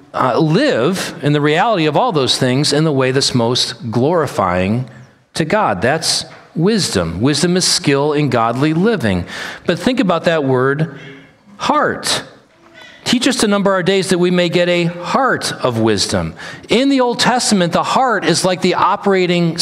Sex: male